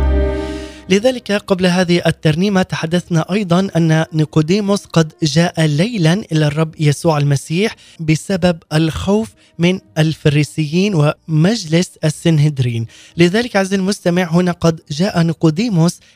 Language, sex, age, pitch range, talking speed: Arabic, male, 20-39, 155-185 Hz, 105 wpm